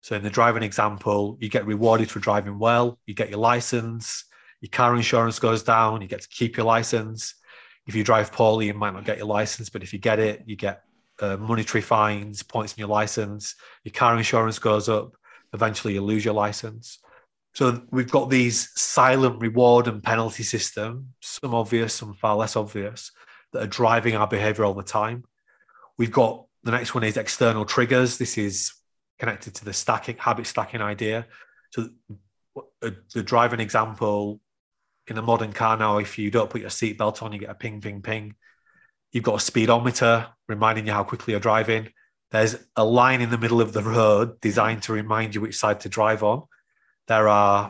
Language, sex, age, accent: English, male, 30-49, British